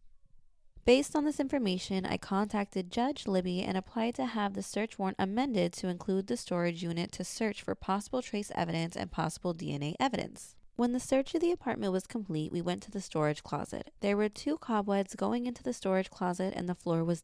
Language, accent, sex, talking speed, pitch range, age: English, American, female, 200 wpm, 165-210 Hz, 20-39